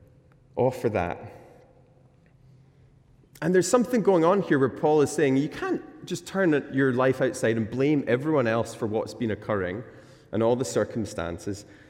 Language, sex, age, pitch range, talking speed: English, male, 30-49, 115-145 Hz, 155 wpm